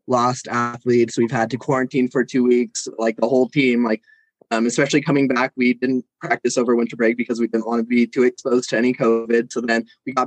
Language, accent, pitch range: English, American, 120-135 Hz